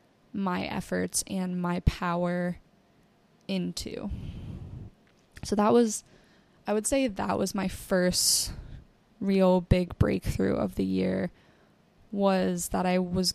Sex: female